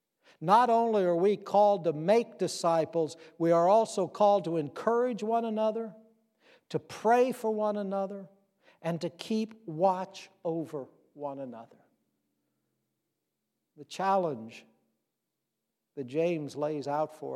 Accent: American